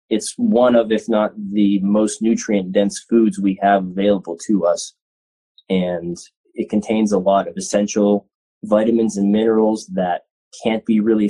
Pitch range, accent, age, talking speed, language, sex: 95-110 Hz, American, 20-39, 155 wpm, English, male